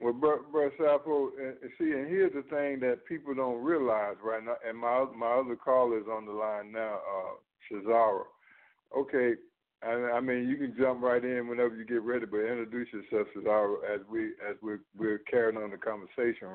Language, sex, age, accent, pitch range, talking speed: English, male, 60-79, American, 120-165 Hz, 190 wpm